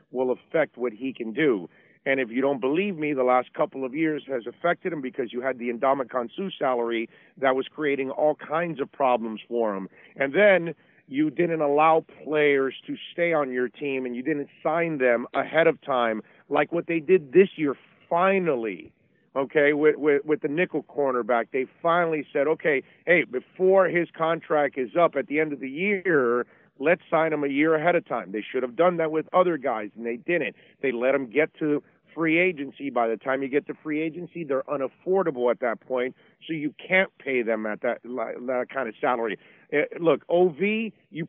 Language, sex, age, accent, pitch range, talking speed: English, male, 40-59, American, 130-170 Hz, 200 wpm